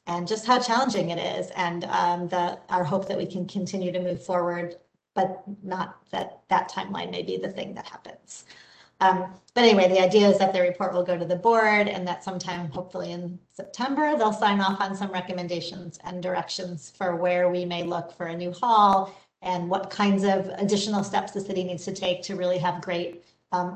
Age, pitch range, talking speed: 40-59, 180-215 Hz, 205 wpm